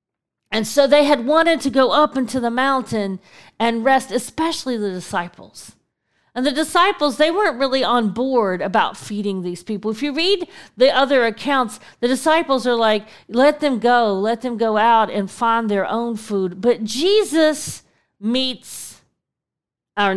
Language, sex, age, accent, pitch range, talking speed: English, female, 40-59, American, 215-285 Hz, 160 wpm